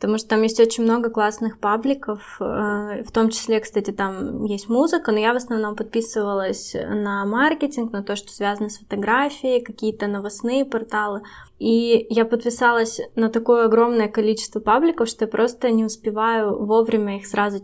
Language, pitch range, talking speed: Russian, 210-240 Hz, 160 wpm